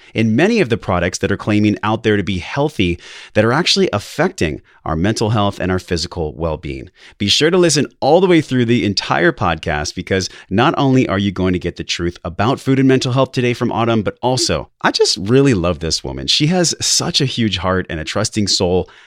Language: English